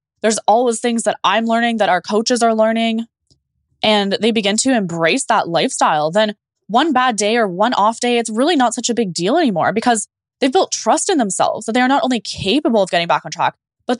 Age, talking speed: 10-29, 220 wpm